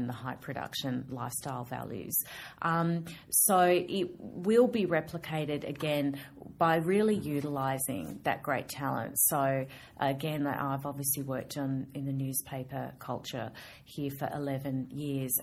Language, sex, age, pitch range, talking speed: English, female, 30-49, 130-150 Hz, 125 wpm